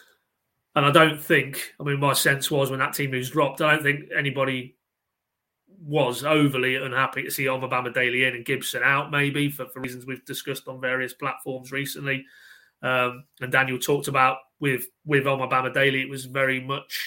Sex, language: male, English